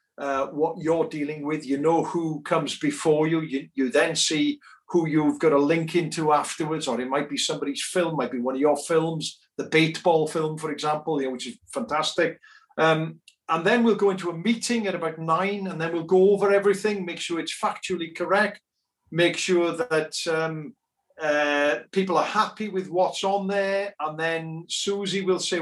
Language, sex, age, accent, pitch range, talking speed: English, male, 50-69, British, 150-185 Hz, 190 wpm